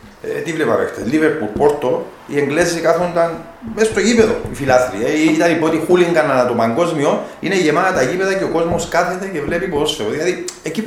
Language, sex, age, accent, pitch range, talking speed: Greek, male, 40-59, Spanish, 135-195 Hz, 190 wpm